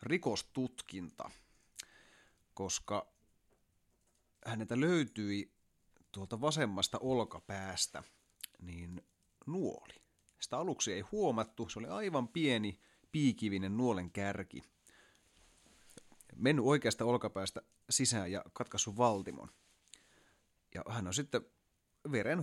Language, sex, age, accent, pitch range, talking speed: Finnish, male, 30-49, native, 95-120 Hz, 85 wpm